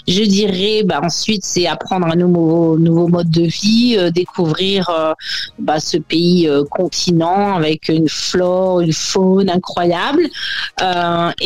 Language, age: French, 40-59